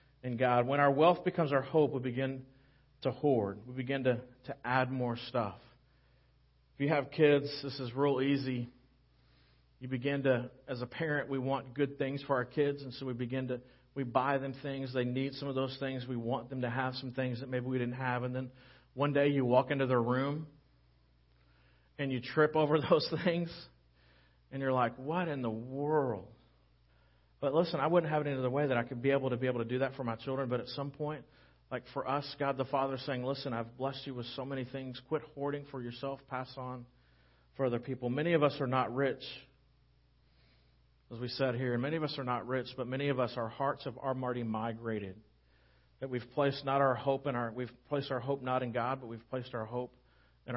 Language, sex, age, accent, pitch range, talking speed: English, male, 40-59, American, 120-140 Hz, 225 wpm